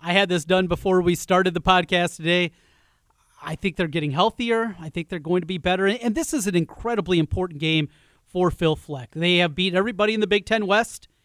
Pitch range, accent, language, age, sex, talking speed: 165-200 Hz, American, English, 30-49, male, 220 wpm